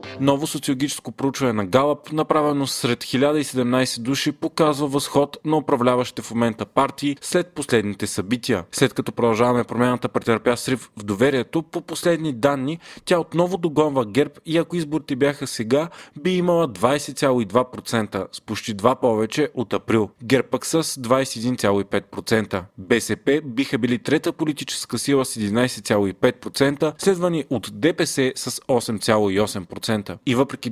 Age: 30-49